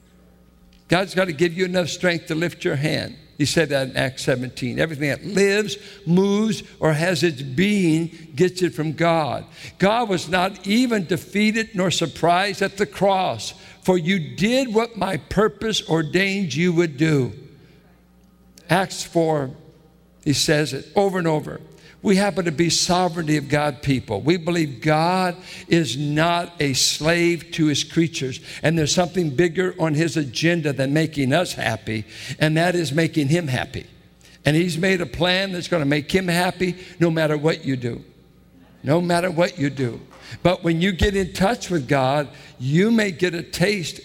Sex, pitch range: male, 150-185 Hz